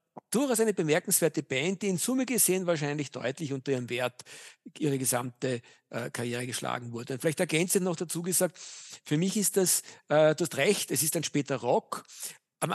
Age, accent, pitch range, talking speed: 50-69, German, 145-185 Hz, 185 wpm